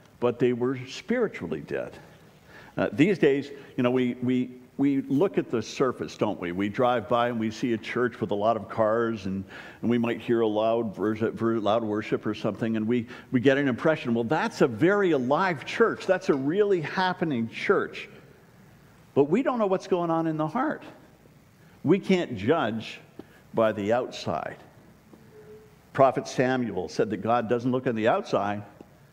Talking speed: 175 wpm